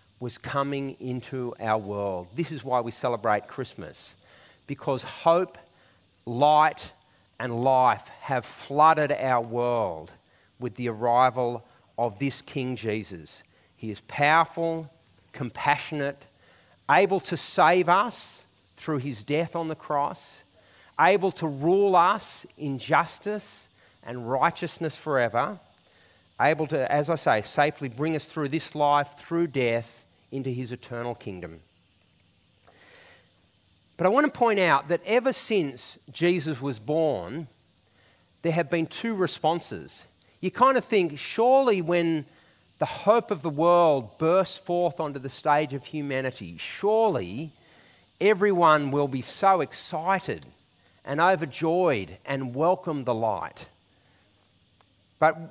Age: 40-59